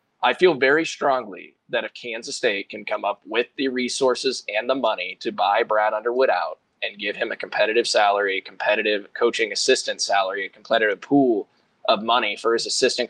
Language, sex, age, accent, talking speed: English, male, 20-39, American, 190 wpm